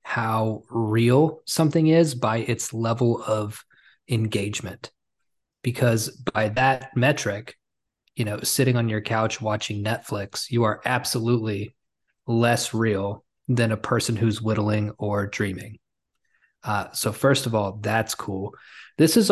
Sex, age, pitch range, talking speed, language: male, 20-39, 105-125 Hz, 130 wpm, English